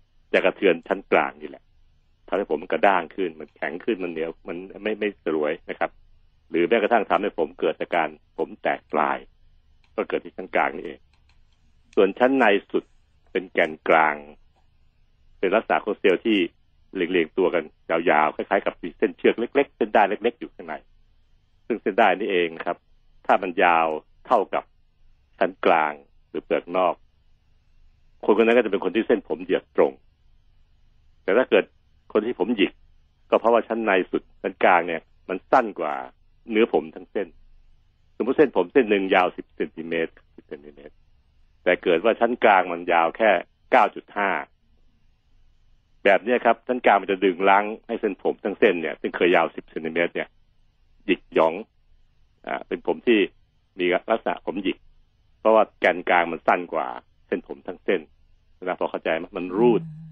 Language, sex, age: Thai, male, 60-79